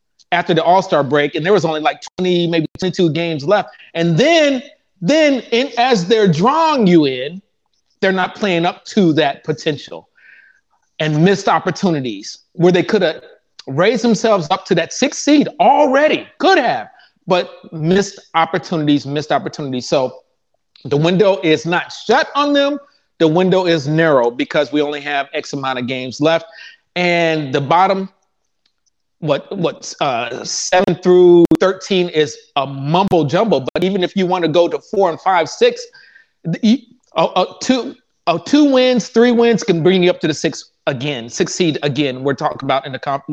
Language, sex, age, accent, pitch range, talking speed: English, male, 30-49, American, 160-205 Hz, 175 wpm